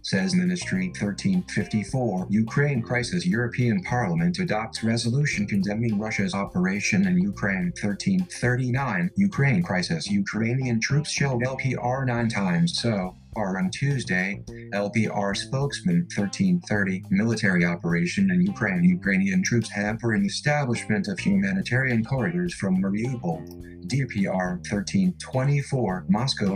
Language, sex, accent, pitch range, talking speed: English, male, American, 105-145 Hz, 105 wpm